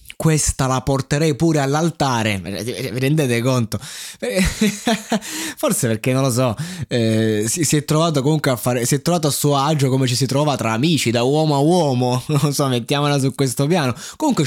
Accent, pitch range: native, 115-155 Hz